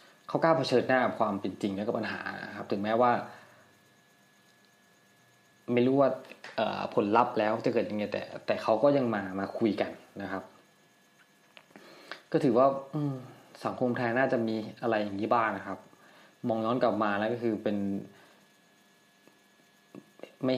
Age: 20-39